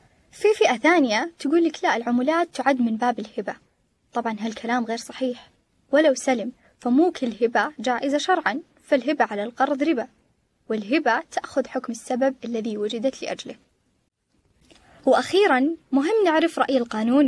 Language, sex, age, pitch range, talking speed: Arabic, female, 10-29, 230-290 Hz, 130 wpm